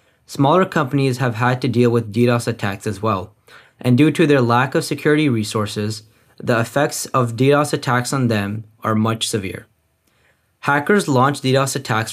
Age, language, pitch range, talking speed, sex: 20-39, English, 115-140 Hz, 165 wpm, male